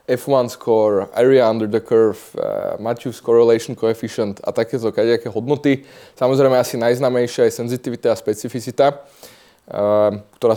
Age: 20-39